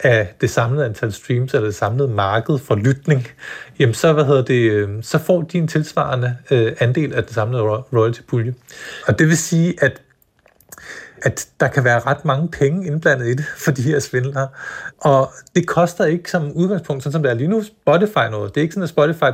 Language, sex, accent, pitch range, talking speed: Danish, male, native, 125-155 Hz, 195 wpm